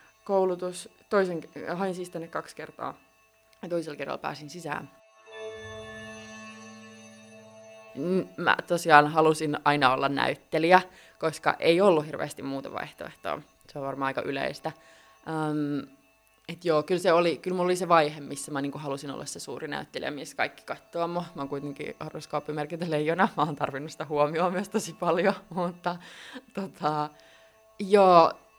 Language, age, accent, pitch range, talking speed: Finnish, 20-39, native, 140-180 Hz, 135 wpm